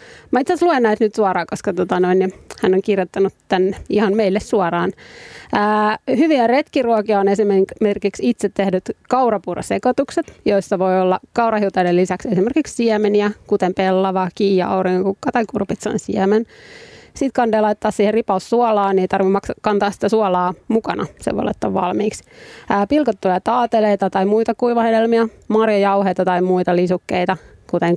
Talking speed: 145 wpm